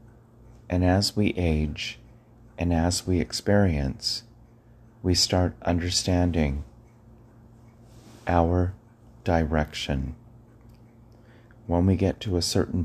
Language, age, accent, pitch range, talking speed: English, 40-59, American, 90-115 Hz, 90 wpm